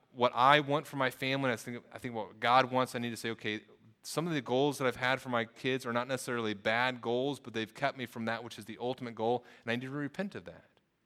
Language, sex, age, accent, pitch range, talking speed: English, male, 30-49, American, 120-140 Hz, 280 wpm